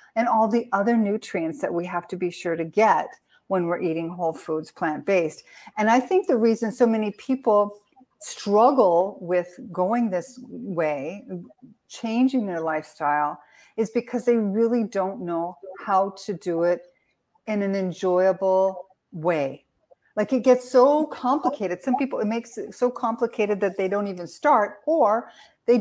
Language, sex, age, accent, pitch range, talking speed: English, female, 50-69, American, 180-240 Hz, 160 wpm